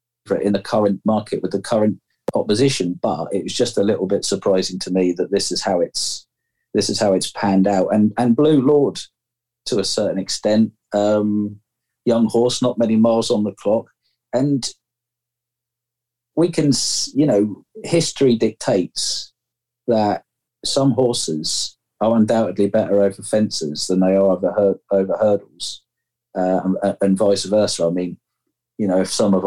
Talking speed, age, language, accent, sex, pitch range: 165 wpm, 40-59, English, British, male, 90-120 Hz